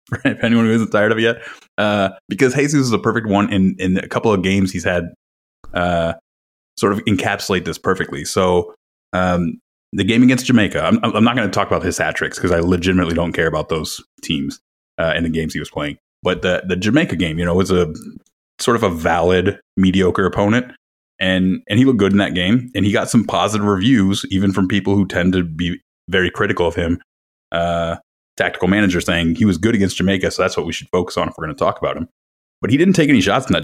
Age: 20-39